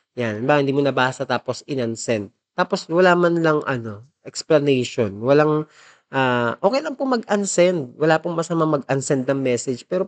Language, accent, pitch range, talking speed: Filipino, native, 125-170 Hz, 155 wpm